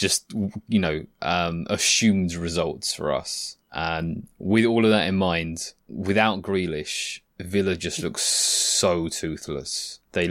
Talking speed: 135 wpm